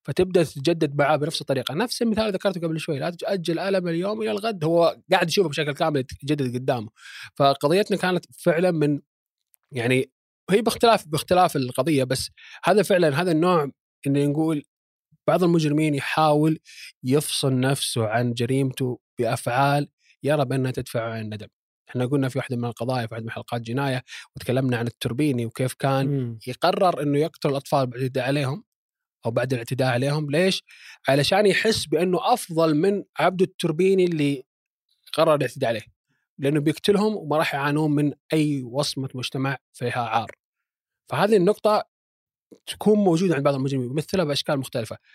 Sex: male